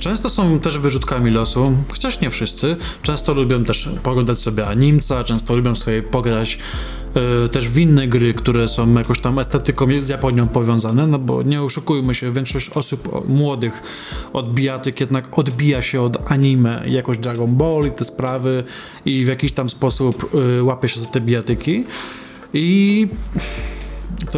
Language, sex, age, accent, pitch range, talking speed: Polish, male, 20-39, native, 120-150 Hz, 160 wpm